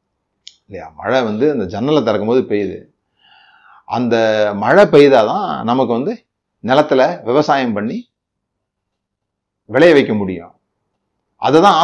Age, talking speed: 30-49, 80 wpm